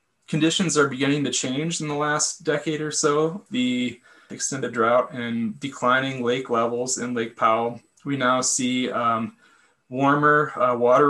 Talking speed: 150 wpm